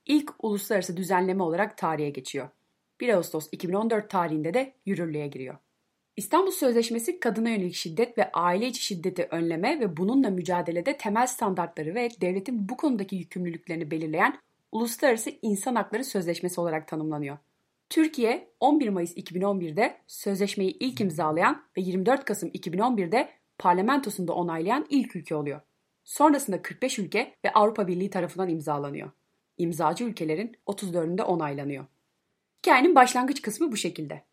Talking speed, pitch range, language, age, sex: 130 wpm, 170-240 Hz, Turkish, 30-49, female